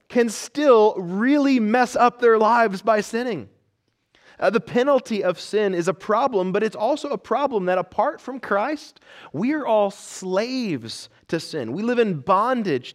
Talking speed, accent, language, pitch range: 165 wpm, American, English, 170-240 Hz